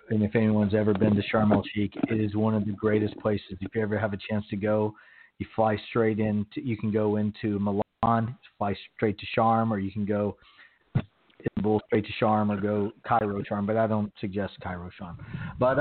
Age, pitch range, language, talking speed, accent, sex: 40-59, 105-120 Hz, English, 215 wpm, American, male